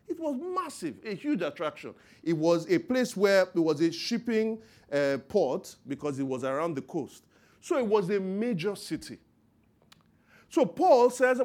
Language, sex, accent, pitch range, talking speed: English, male, Nigerian, 145-230 Hz, 170 wpm